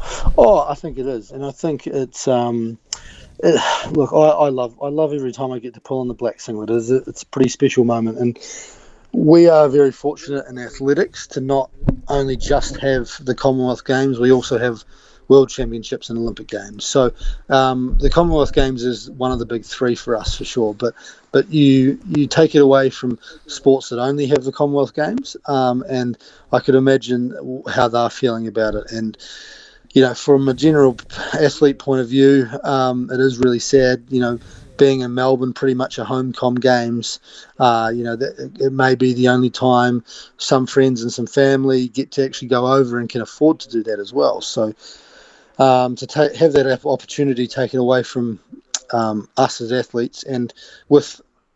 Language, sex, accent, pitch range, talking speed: English, male, Australian, 120-135 Hz, 190 wpm